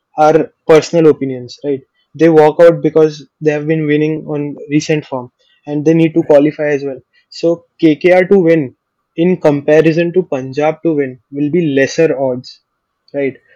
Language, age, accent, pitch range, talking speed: Hindi, 20-39, native, 150-170 Hz, 165 wpm